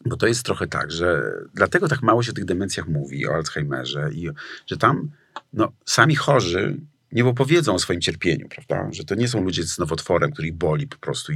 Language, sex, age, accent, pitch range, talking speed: Polish, male, 40-59, native, 90-125 Hz, 210 wpm